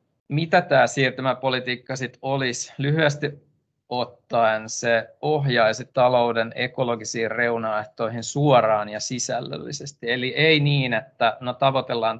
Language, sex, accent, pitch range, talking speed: Finnish, male, native, 115-135 Hz, 100 wpm